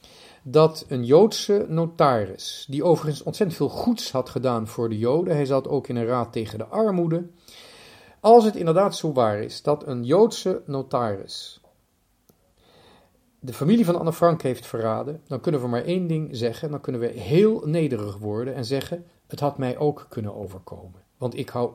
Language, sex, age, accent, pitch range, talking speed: Dutch, male, 40-59, Dutch, 120-160 Hz, 175 wpm